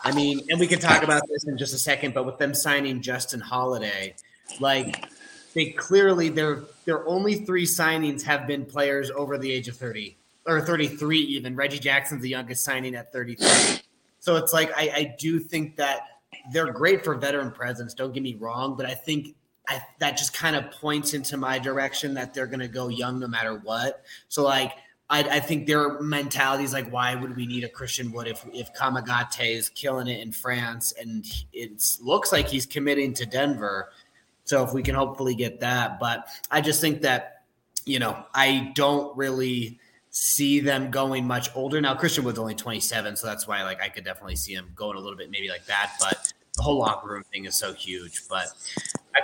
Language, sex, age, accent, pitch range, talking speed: English, male, 30-49, American, 125-145 Hz, 205 wpm